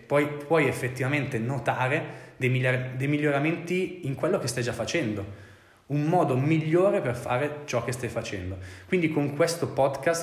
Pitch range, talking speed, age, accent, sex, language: 110-145 Hz, 140 wpm, 20-39, native, male, Italian